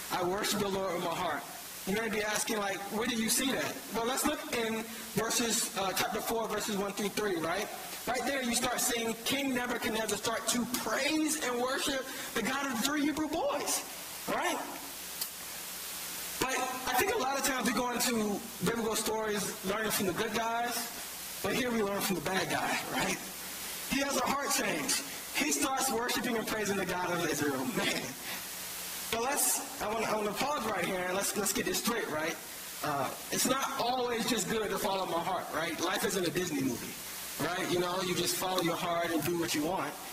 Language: English